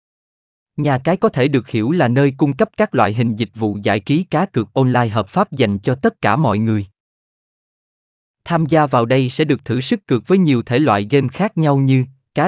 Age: 20-39